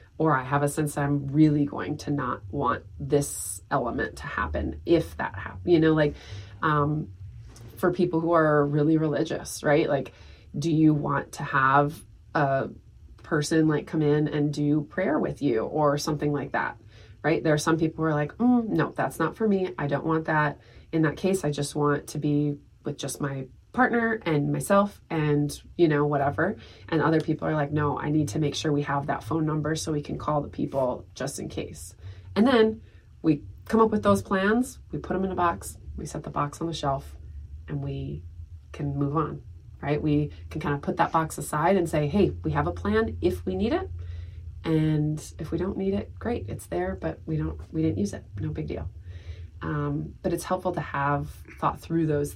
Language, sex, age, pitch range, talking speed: English, female, 20-39, 105-160 Hz, 210 wpm